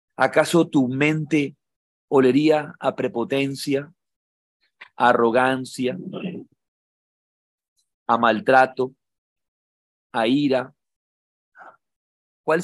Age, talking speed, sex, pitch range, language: 40-59, 60 wpm, male, 115-140 Hz, Spanish